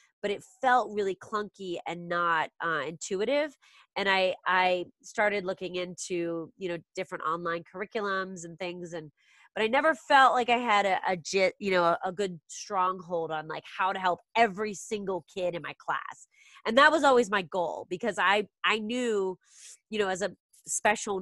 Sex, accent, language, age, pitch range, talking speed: female, American, English, 30-49, 170-215 Hz, 180 wpm